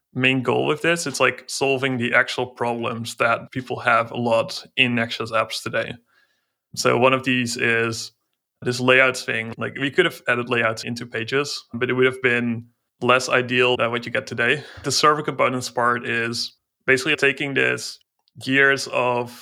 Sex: male